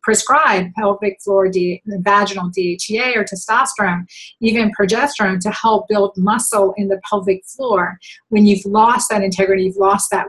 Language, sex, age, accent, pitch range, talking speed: English, female, 40-59, American, 195-225 Hz, 150 wpm